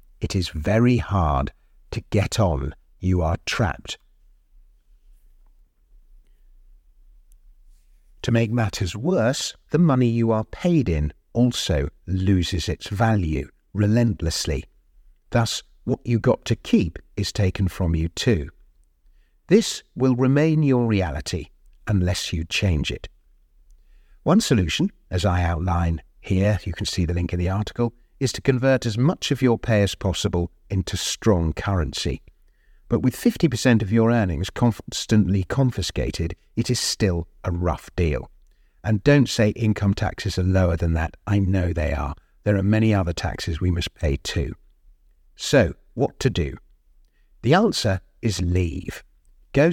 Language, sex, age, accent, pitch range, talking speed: English, male, 50-69, British, 85-115 Hz, 140 wpm